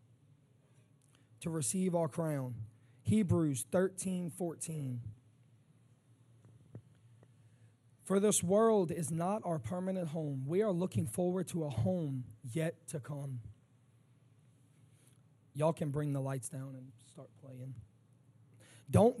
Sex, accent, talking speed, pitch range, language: male, American, 105 wpm, 130-180 Hz, English